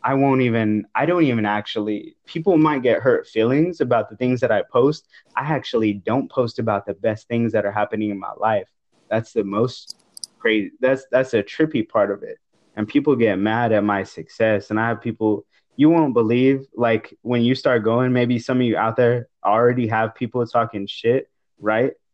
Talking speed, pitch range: 200 wpm, 110-130 Hz